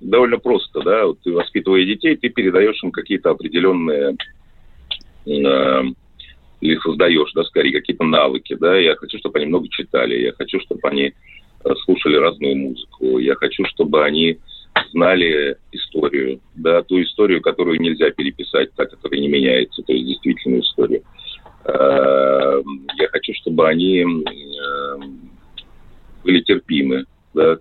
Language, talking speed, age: Russian, 130 wpm, 40-59